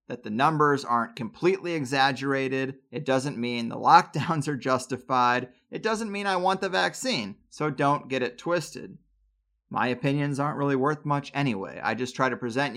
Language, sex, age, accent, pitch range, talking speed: English, male, 30-49, American, 125-160 Hz, 175 wpm